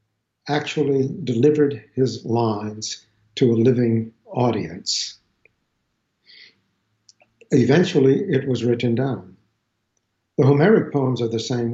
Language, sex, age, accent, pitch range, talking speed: English, male, 60-79, American, 110-135 Hz, 95 wpm